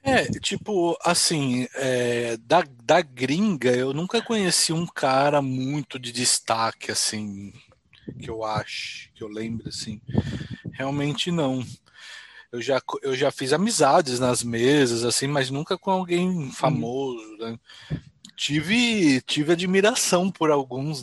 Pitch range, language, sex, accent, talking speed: 120-160 Hz, Portuguese, male, Brazilian, 130 wpm